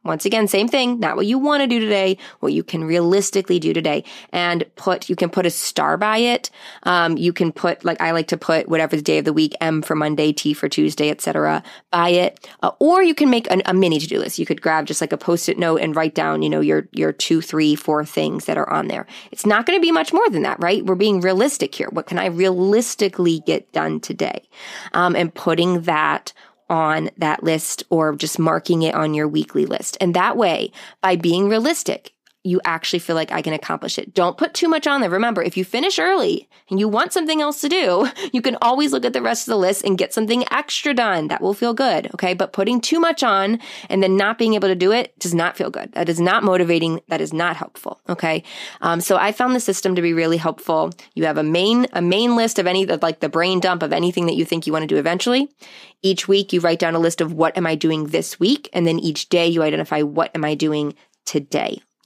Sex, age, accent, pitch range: female, 20-39, American, 160-220 Hz